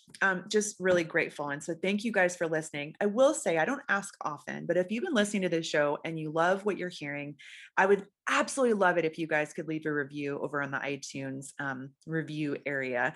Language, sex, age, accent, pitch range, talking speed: English, female, 30-49, American, 155-205 Hz, 235 wpm